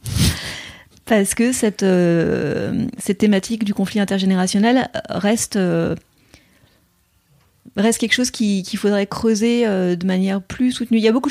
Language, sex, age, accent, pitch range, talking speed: French, female, 30-49, French, 180-215 Hz, 145 wpm